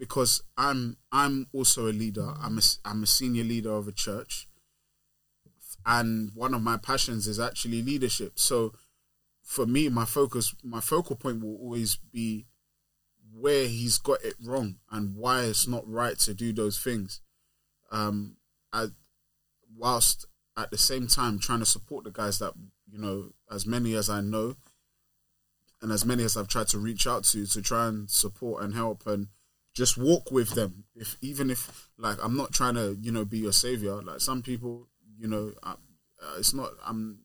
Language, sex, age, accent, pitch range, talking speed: English, male, 20-39, British, 105-125 Hz, 180 wpm